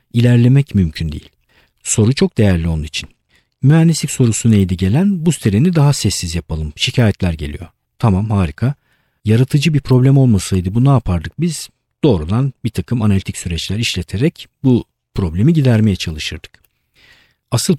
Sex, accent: male, native